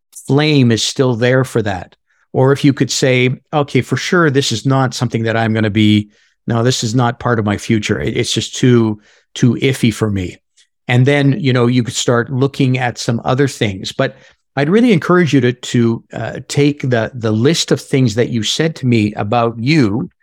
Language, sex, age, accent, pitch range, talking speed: English, male, 50-69, American, 115-150 Hz, 210 wpm